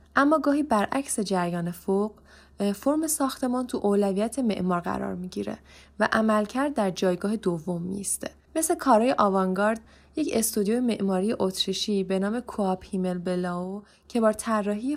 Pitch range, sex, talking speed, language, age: 190-230 Hz, female, 130 wpm, Persian, 10-29